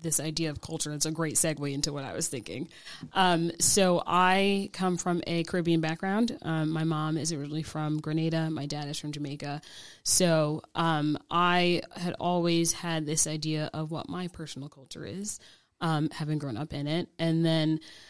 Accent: American